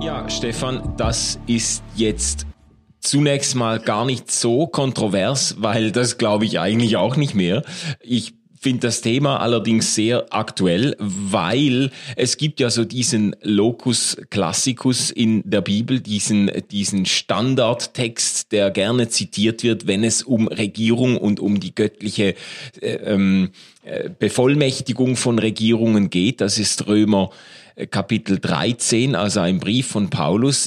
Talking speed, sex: 135 wpm, male